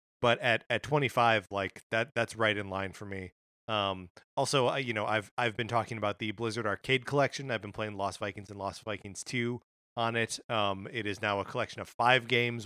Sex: male